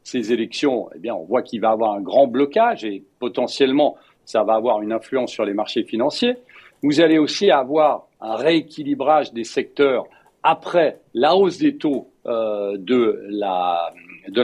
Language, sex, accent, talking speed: French, male, French, 165 wpm